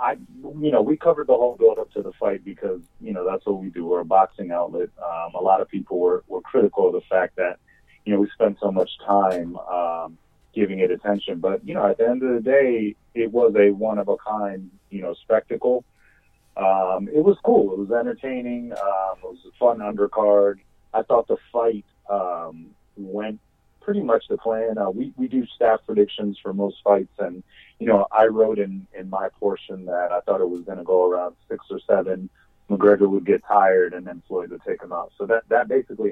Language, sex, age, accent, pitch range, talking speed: English, male, 30-49, American, 95-140 Hz, 220 wpm